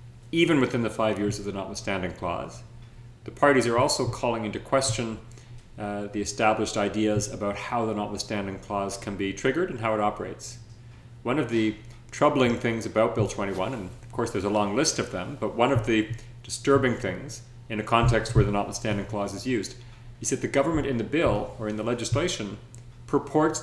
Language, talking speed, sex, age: English, 195 wpm, male, 40-59